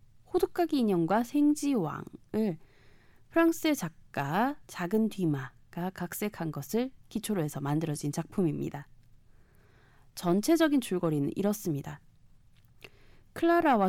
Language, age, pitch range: Korean, 20-39, 145-230 Hz